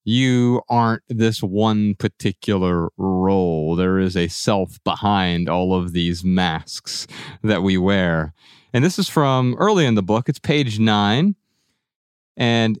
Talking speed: 140 wpm